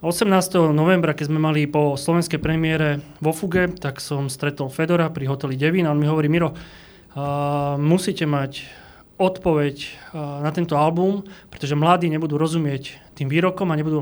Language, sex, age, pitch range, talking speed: Slovak, male, 30-49, 145-170 Hz, 160 wpm